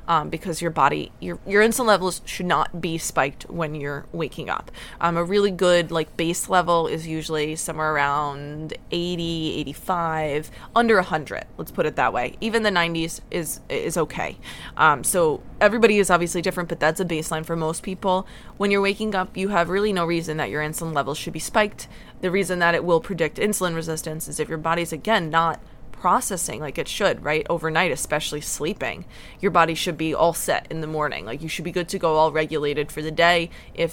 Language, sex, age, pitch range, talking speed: English, female, 20-39, 160-195 Hz, 205 wpm